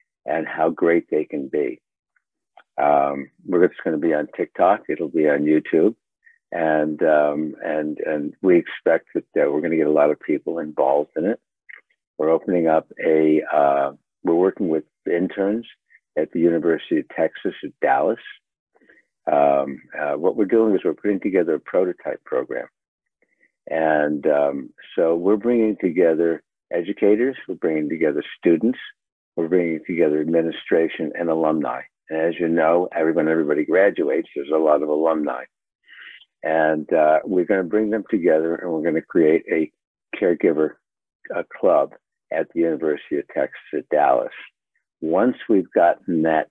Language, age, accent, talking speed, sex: English, 60-79, American, 150 wpm, male